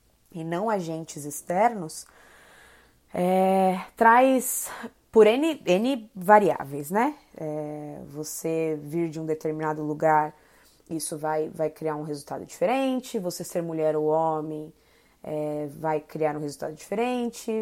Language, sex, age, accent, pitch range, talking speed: Portuguese, female, 20-39, Brazilian, 155-225 Hz, 125 wpm